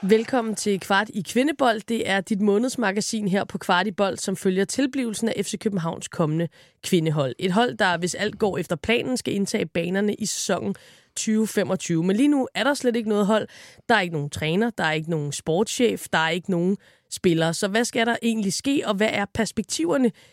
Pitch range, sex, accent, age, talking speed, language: 185-230 Hz, female, native, 20-39, 205 wpm, Danish